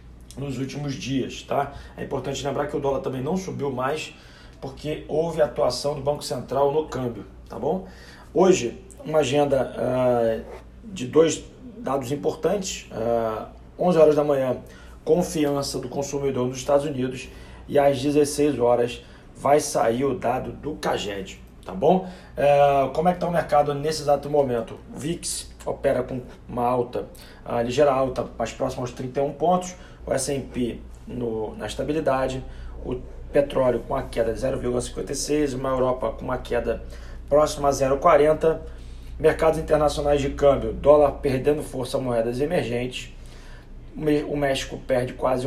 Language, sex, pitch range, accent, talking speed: Portuguese, male, 120-145 Hz, Brazilian, 145 wpm